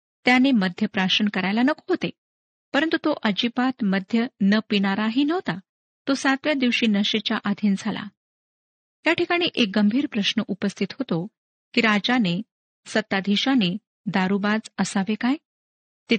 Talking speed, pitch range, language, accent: 125 wpm, 200-245 Hz, Marathi, native